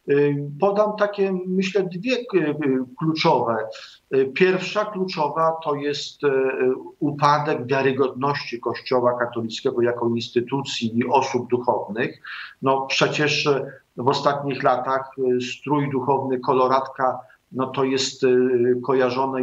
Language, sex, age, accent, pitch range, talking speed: Polish, male, 50-69, native, 120-145 Hz, 95 wpm